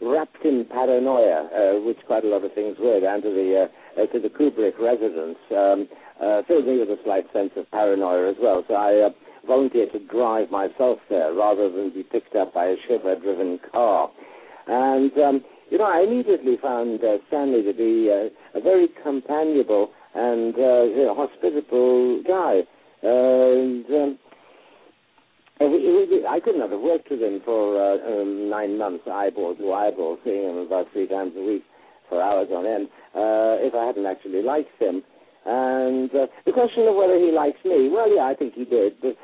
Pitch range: 100-150 Hz